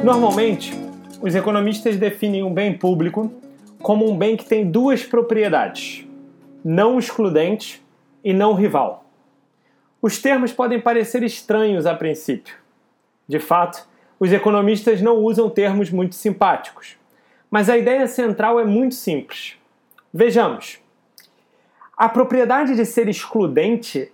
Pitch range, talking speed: 205-240 Hz, 120 wpm